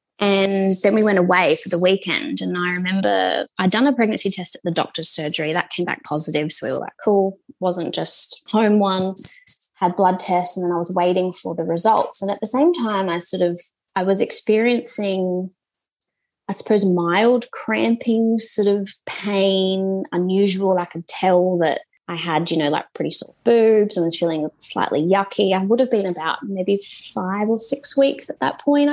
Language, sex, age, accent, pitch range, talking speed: English, female, 20-39, Australian, 175-205 Hz, 195 wpm